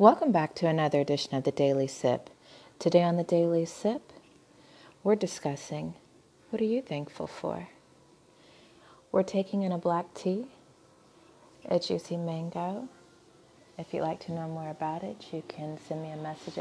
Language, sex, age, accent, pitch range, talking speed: English, female, 30-49, American, 155-195 Hz, 160 wpm